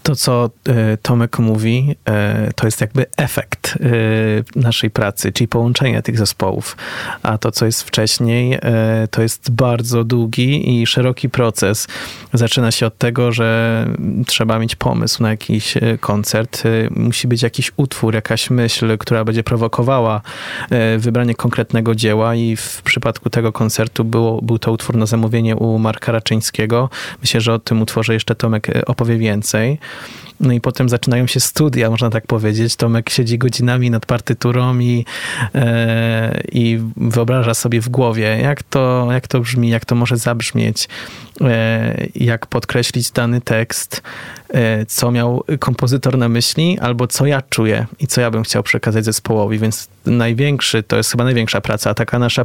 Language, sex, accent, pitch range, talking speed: Polish, male, native, 115-125 Hz, 150 wpm